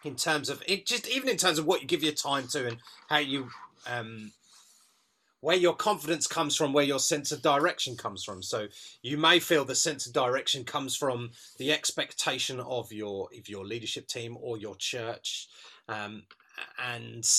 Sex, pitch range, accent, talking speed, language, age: male, 120-160 Hz, British, 185 wpm, English, 30-49